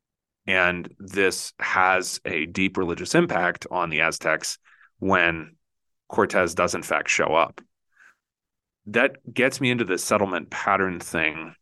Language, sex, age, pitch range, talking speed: English, male, 30-49, 85-110 Hz, 130 wpm